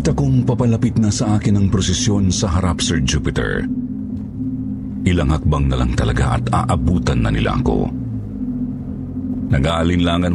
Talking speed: 135 wpm